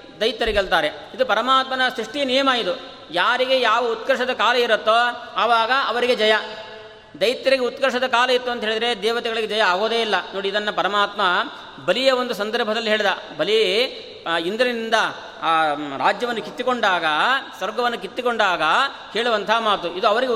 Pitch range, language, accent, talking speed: 205-235 Hz, Kannada, native, 125 wpm